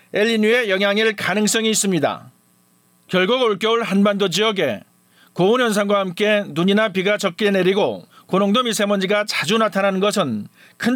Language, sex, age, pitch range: Korean, male, 40-59, 195-220 Hz